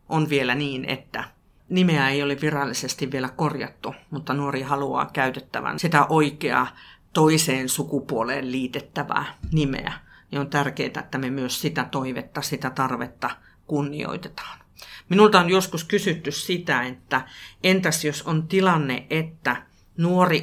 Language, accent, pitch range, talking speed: Finnish, native, 135-165 Hz, 125 wpm